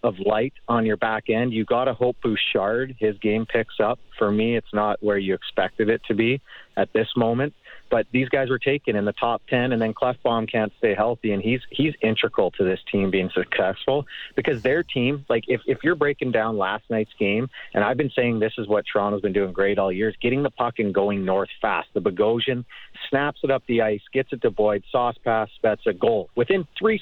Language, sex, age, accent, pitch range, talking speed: English, male, 40-59, American, 110-135 Hz, 225 wpm